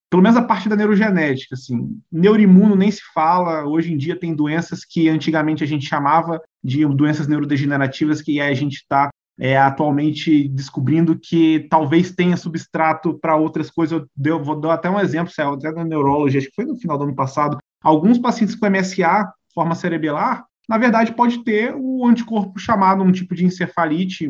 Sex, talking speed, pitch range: male, 180 wpm, 155-205 Hz